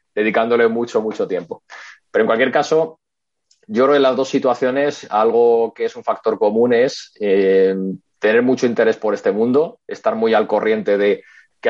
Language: Spanish